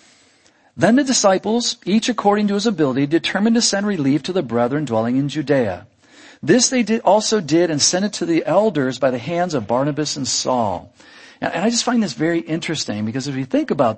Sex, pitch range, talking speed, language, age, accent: male, 140-210 Hz, 200 wpm, English, 50-69, American